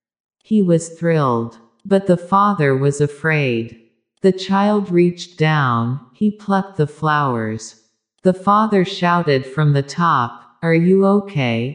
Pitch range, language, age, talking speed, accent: 130-185 Hz, English, 40-59, 130 wpm, American